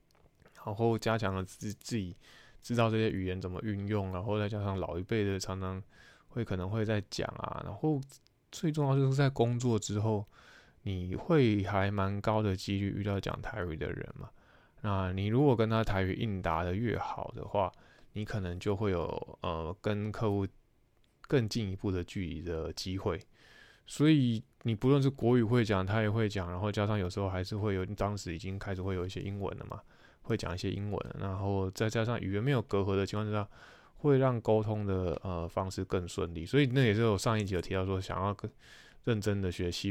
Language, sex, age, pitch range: Chinese, male, 20-39, 95-115 Hz